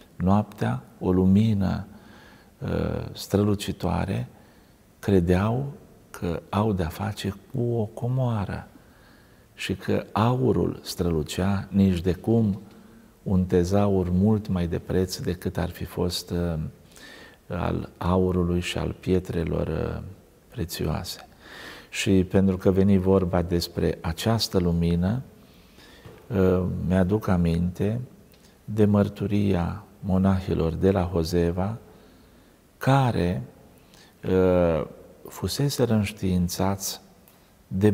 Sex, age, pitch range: male, 50-69, 90-110 Hz